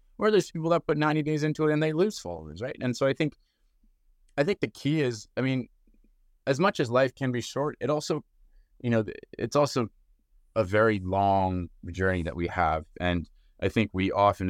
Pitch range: 90-125 Hz